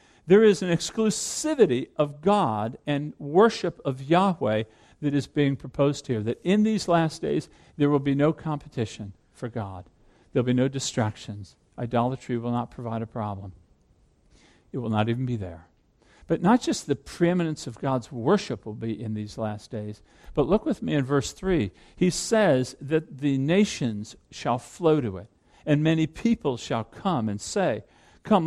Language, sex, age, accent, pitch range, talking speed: English, male, 50-69, American, 120-185 Hz, 175 wpm